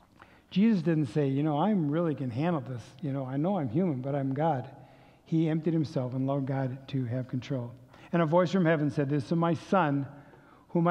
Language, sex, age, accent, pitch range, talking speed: English, male, 50-69, American, 135-170 Hz, 220 wpm